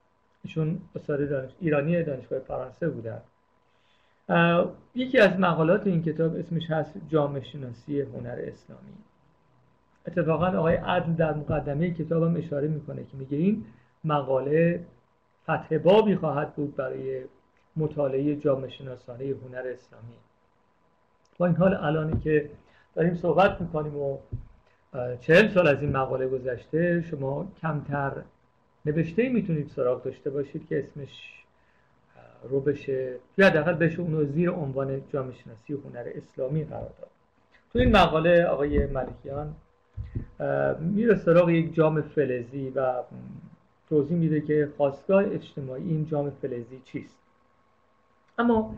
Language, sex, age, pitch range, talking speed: Persian, male, 50-69, 135-175 Hz, 120 wpm